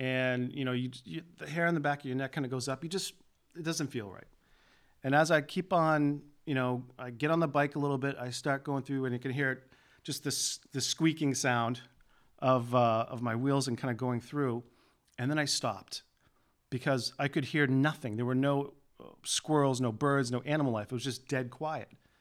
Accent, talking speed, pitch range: American, 230 wpm, 125-155 Hz